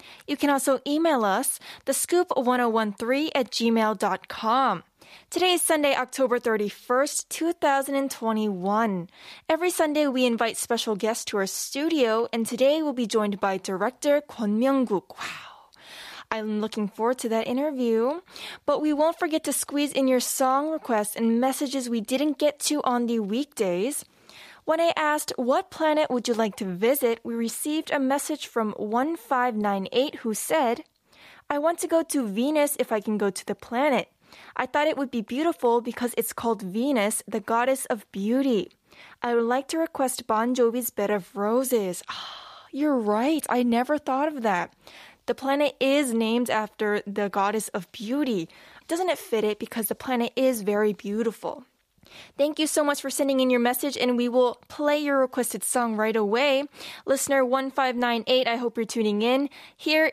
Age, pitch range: 10-29, 225-285 Hz